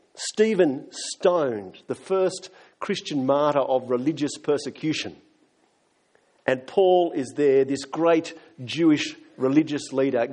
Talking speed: 105 wpm